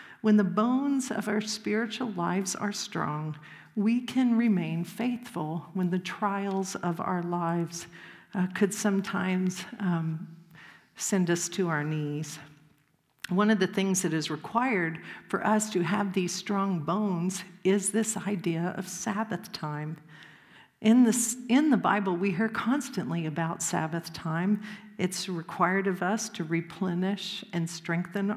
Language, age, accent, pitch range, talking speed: English, 50-69, American, 175-215 Hz, 140 wpm